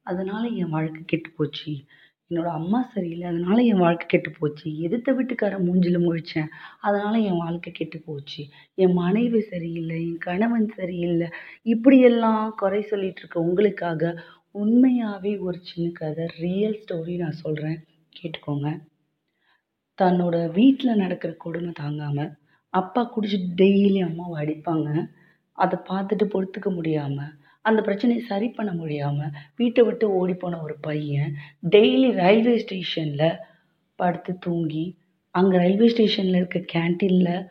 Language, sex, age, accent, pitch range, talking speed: Tamil, female, 30-49, native, 165-205 Hz, 120 wpm